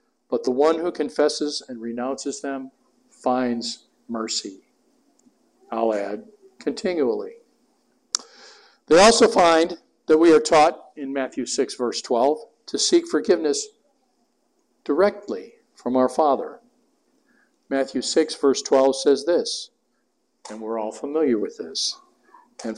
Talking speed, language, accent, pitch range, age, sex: 120 wpm, English, American, 125-200 Hz, 50-69, male